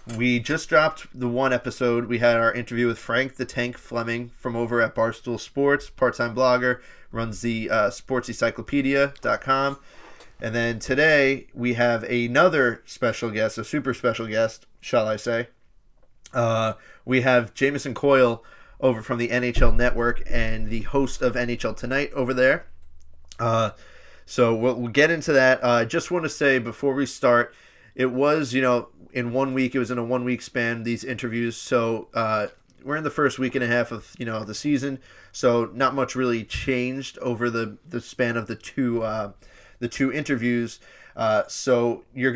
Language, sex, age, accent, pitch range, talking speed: English, male, 30-49, American, 115-130 Hz, 175 wpm